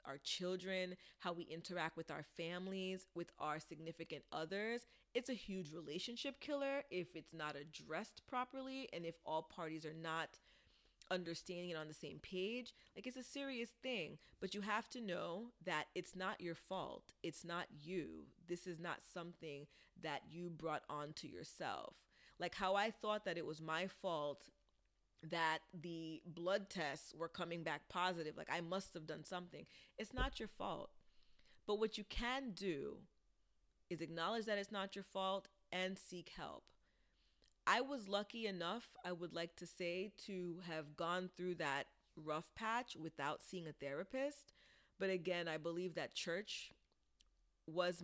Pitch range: 160-200 Hz